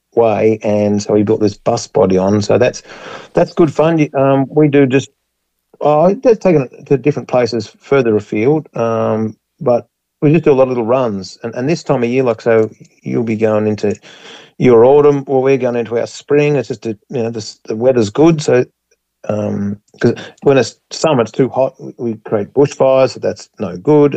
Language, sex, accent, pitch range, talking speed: English, male, Australian, 110-135 Hz, 205 wpm